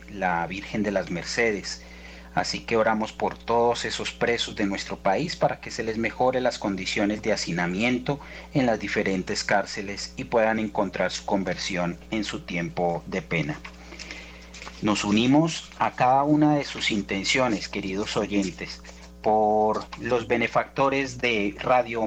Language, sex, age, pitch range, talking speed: Spanish, male, 40-59, 85-125 Hz, 145 wpm